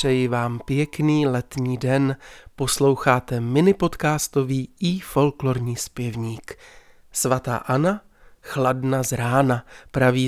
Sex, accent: male, native